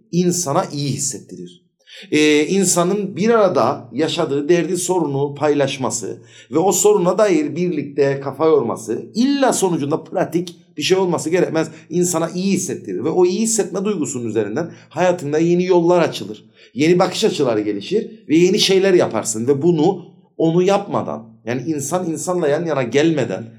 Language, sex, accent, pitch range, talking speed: Turkish, male, native, 140-185 Hz, 140 wpm